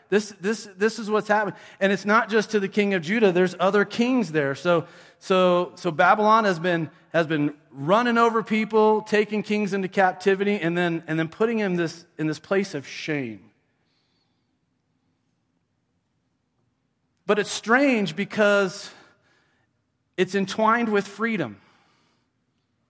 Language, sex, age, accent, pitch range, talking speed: English, male, 40-59, American, 145-200 Hz, 140 wpm